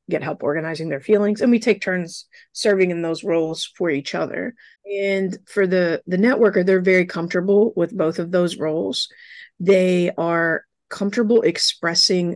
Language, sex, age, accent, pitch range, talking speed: English, female, 30-49, American, 170-210 Hz, 160 wpm